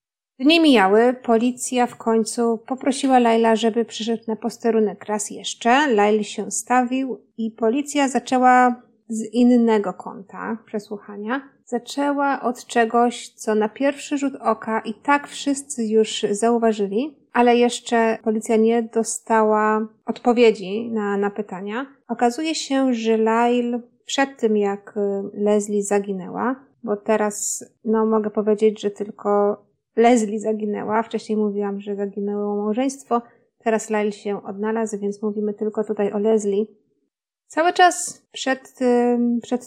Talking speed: 125 wpm